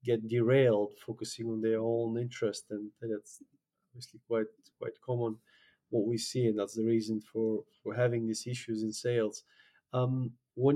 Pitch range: 115-145 Hz